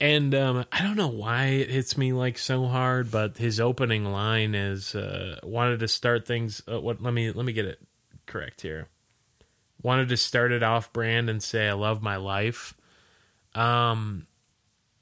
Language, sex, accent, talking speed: English, male, American, 180 wpm